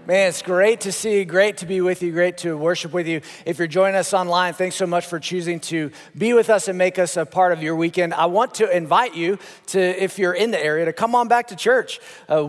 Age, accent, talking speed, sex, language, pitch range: 40-59, American, 270 wpm, male, English, 150-180 Hz